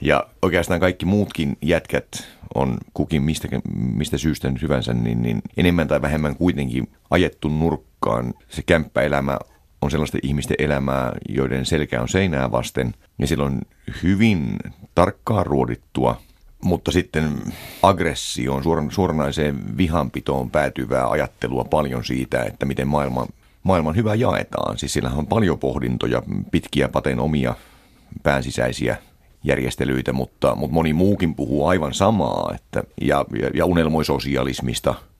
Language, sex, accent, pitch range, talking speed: Finnish, male, native, 65-80 Hz, 125 wpm